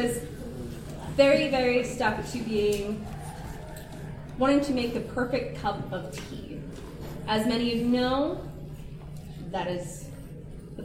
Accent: American